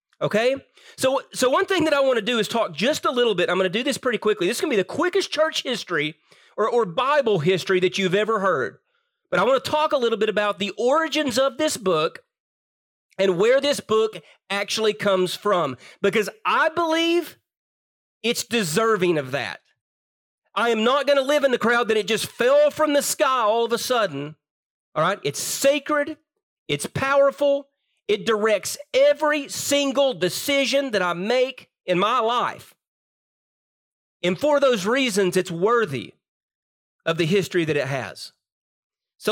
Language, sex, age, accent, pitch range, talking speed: English, male, 40-59, American, 195-285 Hz, 185 wpm